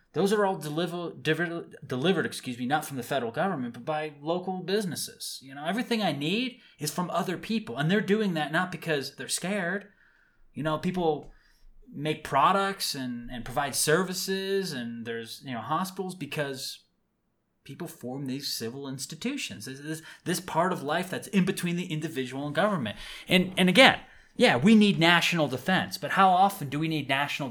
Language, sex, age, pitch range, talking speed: English, male, 20-39, 140-185 Hz, 180 wpm